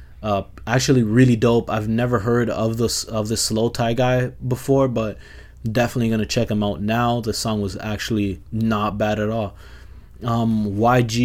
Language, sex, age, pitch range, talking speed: English, male, 20-39, 105-120 Hz, 175 wpm